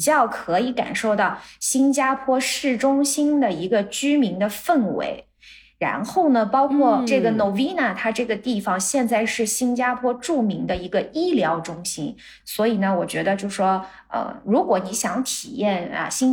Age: 20-39